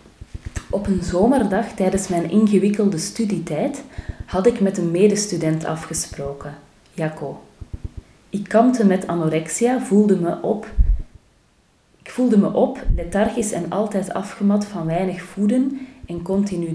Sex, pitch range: female, 165-205 Hz